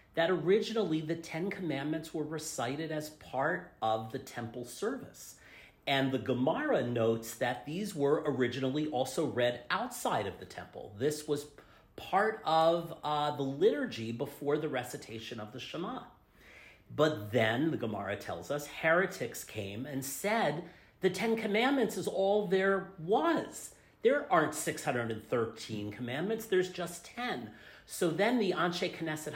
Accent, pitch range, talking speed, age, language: American, 125-175 Hz, 140 wpm, 40-59, English